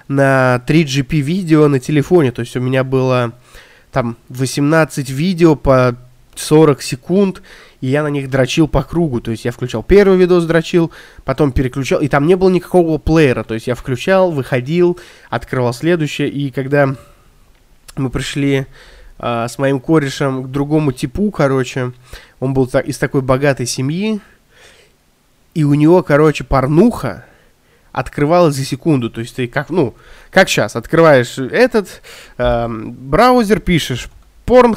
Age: 20-39